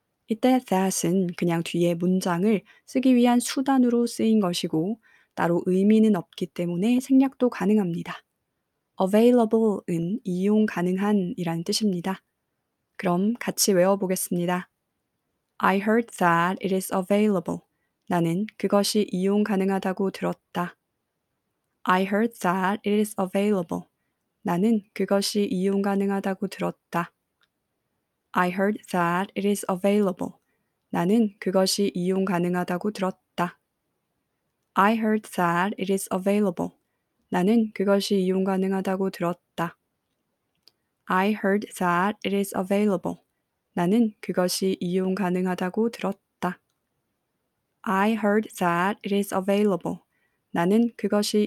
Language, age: Korean, 20-39